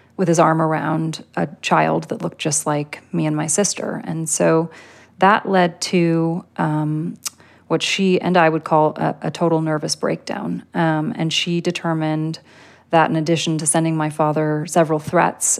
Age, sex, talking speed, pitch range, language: 30-49, female, 170 wpm, 155-175 Hz, English